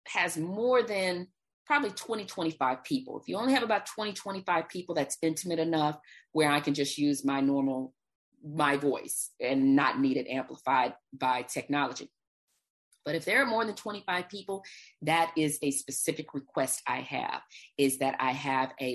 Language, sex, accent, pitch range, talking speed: English, female, American, 145-210 Hz, 165 wpm